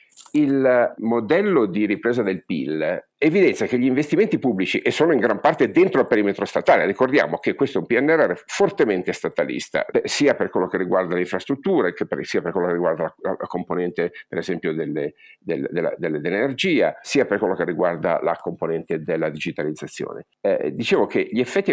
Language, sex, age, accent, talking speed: Italian, male, 50-69, native, 165 wpm